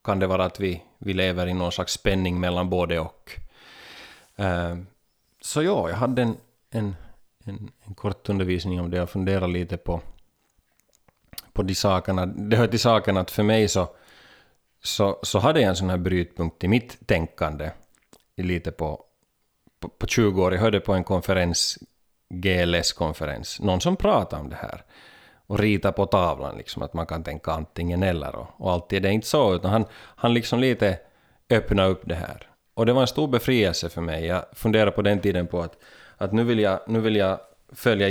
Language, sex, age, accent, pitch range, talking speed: Swedish, male, 30-49, Finnish, 90-110 Hz, 185 wpm